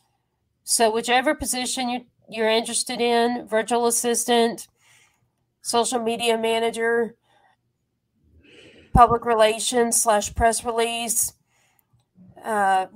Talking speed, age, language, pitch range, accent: 85 wpm, 30-49, English, 205-230 Hz, American